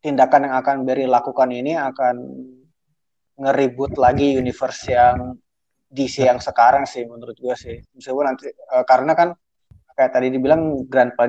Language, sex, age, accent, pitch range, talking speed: Indonesian, male, 20-39, native, 120-145 Hz, 140 wpm